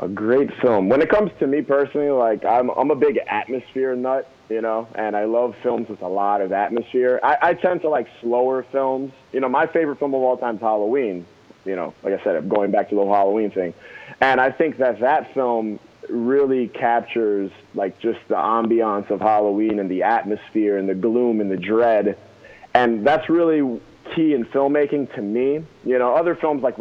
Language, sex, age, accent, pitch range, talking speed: English, male, 20-39, American, 105-130 Hz, 205 wpm